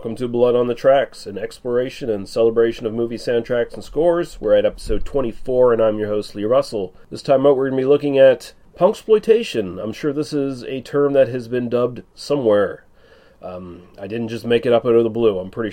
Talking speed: 230 wpm